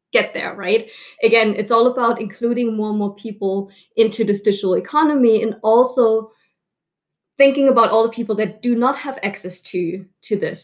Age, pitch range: 20-39, 195-235 Hz